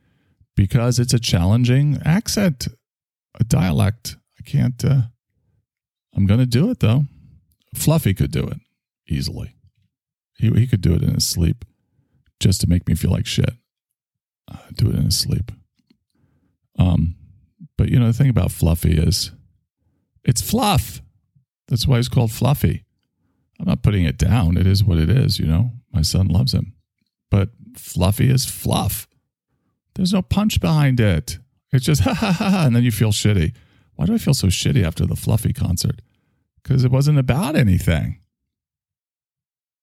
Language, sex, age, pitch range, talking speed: English, male, 40-59, 95-130 Hz, 165 wpm